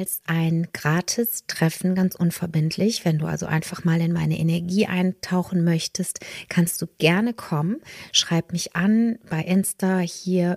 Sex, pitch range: female, 160-185 Hz